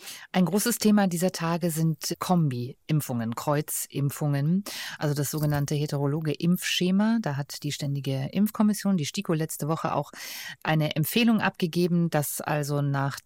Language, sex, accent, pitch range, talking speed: German, female, German, 160-220 Hz, 130 wpm